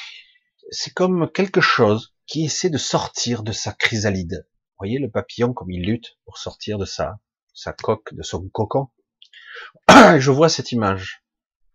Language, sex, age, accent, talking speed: French, male, 40-59, French, 160 wpm